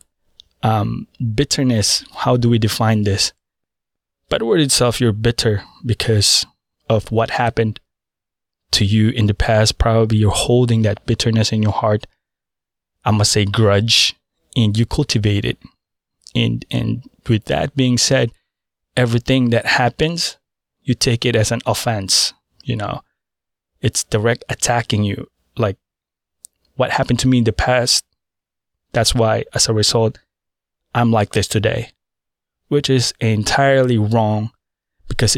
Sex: male